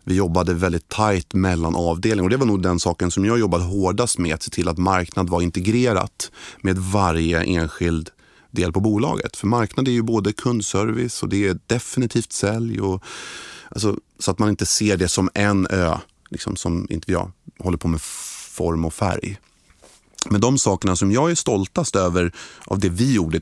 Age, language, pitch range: 30-49, Swedish, 90-115 Hz